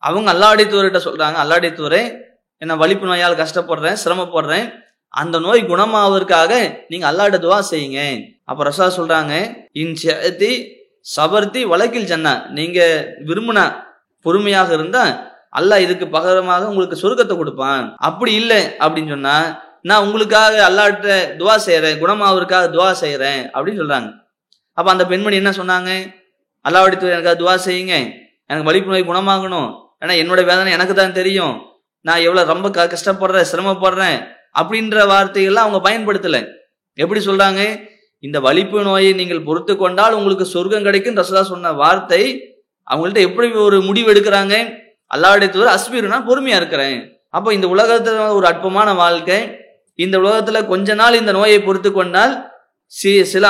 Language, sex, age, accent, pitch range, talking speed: English, male, 20-39, Indian, 180-210 Hz, 115 wpm